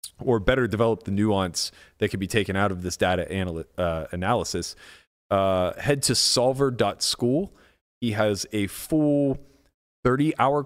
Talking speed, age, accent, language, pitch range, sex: 140 wpm, 30-49, American, English, 90-120 Hz, male